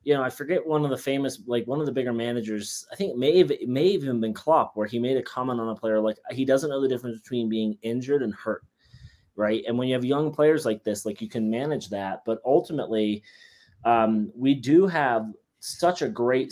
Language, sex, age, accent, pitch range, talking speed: English, male, 20-39, American, 110-135 Hz, 235 wpm